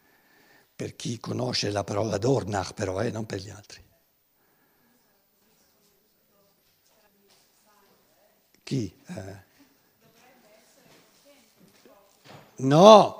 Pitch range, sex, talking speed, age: 125-165 Hz, male, 70 wpm, 60-79